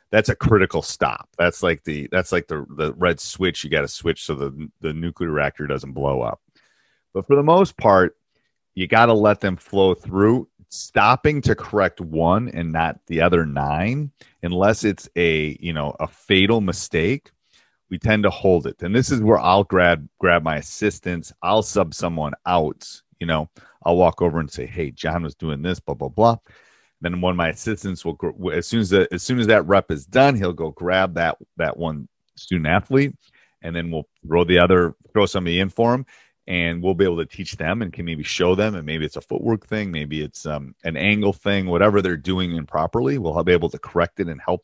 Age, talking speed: 30-49, 210 wpm